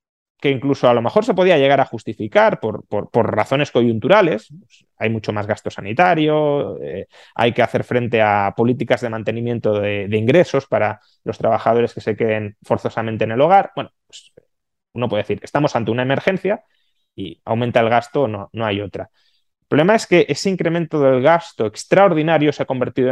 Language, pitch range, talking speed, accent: Spanish, 110-140 Hz, 185 wpm, Spanish